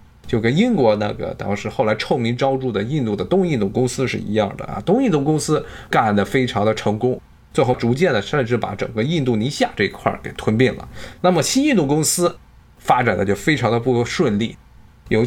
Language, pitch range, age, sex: Chinese, 105-140 Hz, 20-39, male